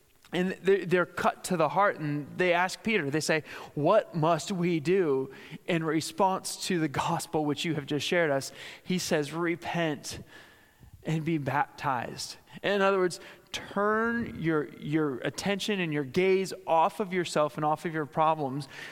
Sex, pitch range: male, 145-180 Hz